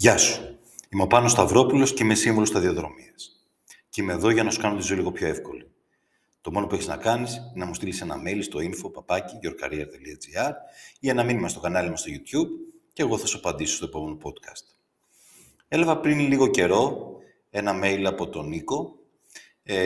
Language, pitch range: Greek, 95-130 Hz